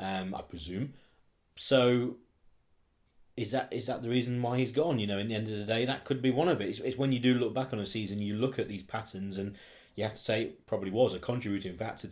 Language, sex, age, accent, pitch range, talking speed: English, male, 30-49, British, 95-125 Hz, 260 wpm